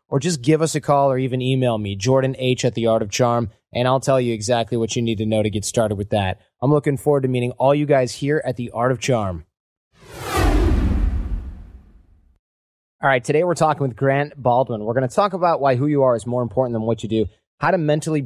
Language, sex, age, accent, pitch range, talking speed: English, male, 30-49, American, 110-140 Hz, 240 wpm